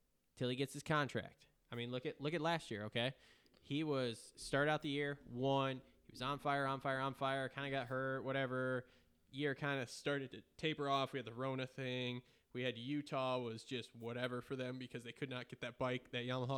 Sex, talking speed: male, 225 wpm